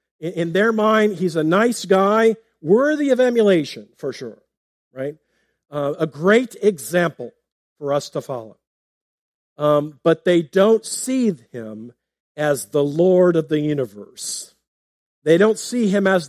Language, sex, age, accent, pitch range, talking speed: English, male, 50-69, American, 125-205 Hz, 140 wpm